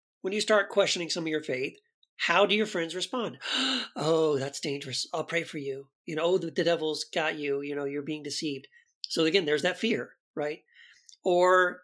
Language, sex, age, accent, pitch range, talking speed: English, male, 40-59, American, 155-215 Hz, 200 wpm